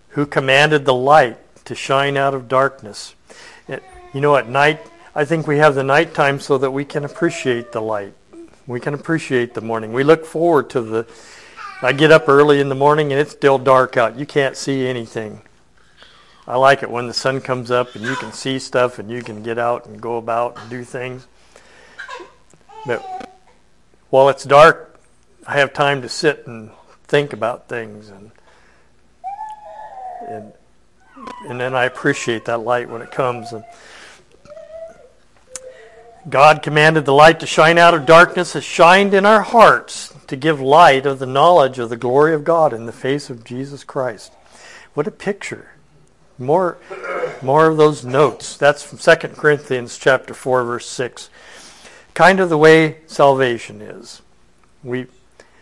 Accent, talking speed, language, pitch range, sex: American, 170 wpm, English, 125-155 Hz, male